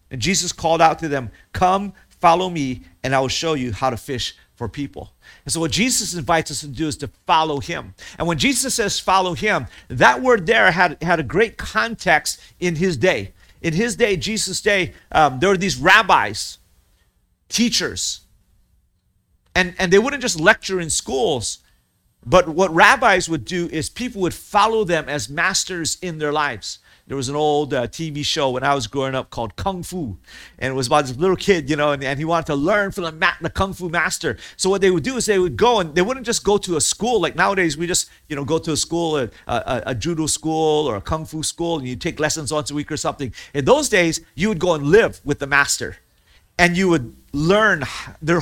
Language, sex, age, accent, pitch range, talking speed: English, male, 50-69, American, 145-185 Hz, 225 wpm